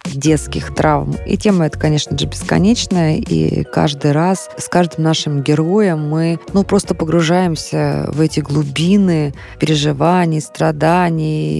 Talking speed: 125 wpm